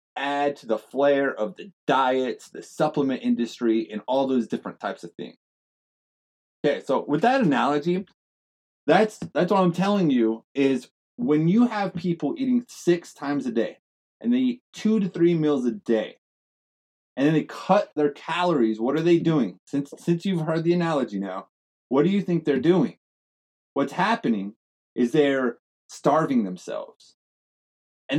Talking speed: 165 wpm